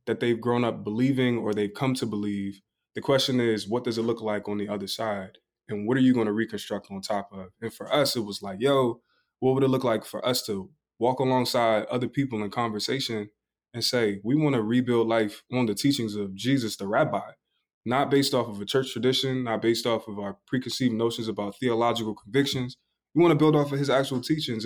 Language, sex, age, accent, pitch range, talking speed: English, male, 20-39, American, 110-130 Hz, 220 wpm